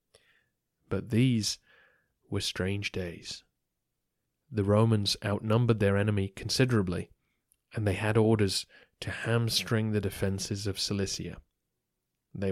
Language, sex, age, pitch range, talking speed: English, male, 20-39, 95-110 Hz, 105 wpm